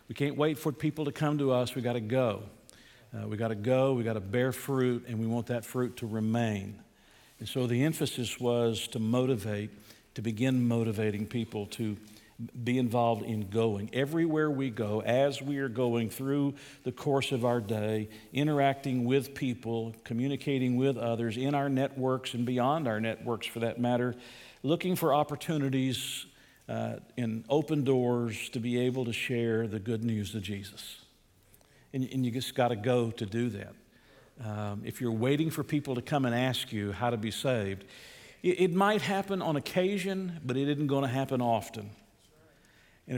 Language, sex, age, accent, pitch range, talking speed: English, male, 50-69, American, 110-135 Hz, 180 wpm